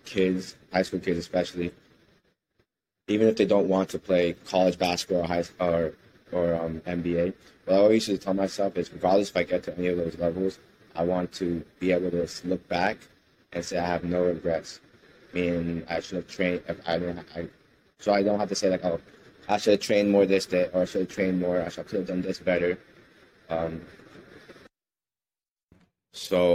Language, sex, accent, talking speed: English, male, American, 200 wpm